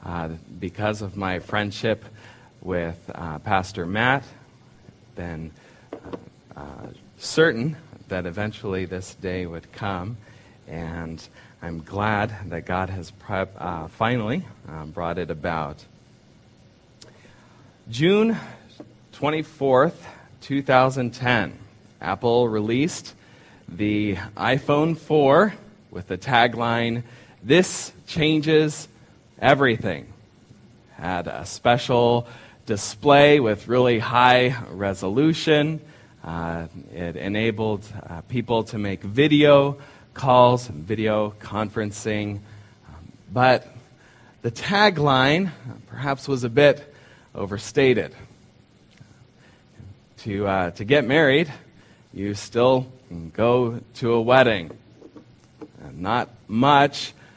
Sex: male